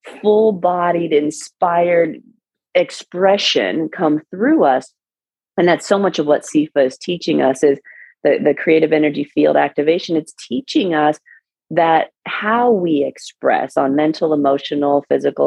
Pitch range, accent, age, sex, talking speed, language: 145-185 Hz, American, 30-49, female, 130 wpm, English